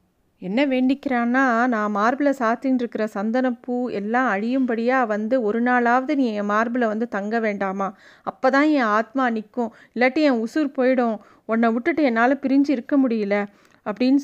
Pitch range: 220-260 Hz